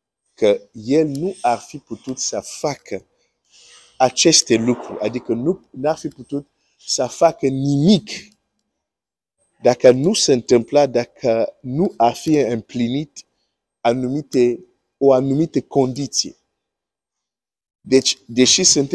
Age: 50-69